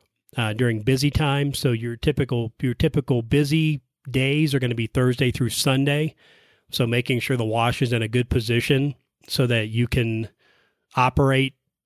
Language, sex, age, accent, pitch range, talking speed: English, male, 30-49, American, 110-130 Hz, 165 wpm